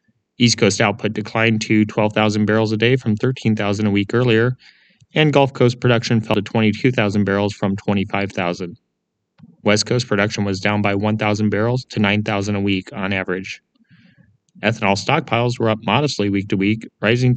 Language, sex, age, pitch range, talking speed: English, male, 30-49, 100-115 Hz, 160 wpm